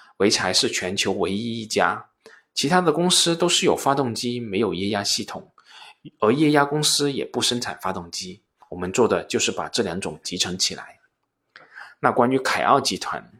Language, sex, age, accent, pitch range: Chinese, male, 20-39, native, 100-145 Hz